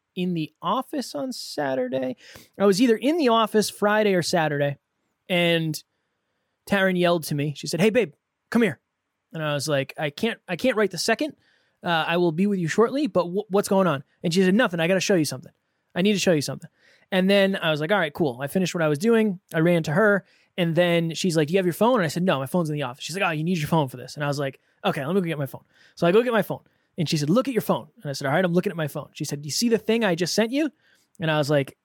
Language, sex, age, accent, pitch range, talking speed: English, male, 20-39, American, 155-200 Hz, 295 wpm